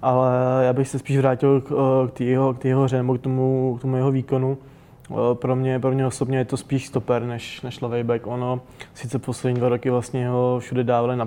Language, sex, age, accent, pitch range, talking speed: Czech, male, 20-39, native, 125-135 Hz, 225 wpm